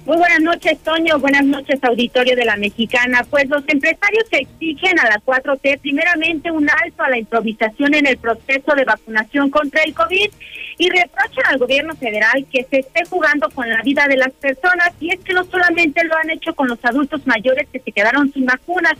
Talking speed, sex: 200 wpm, female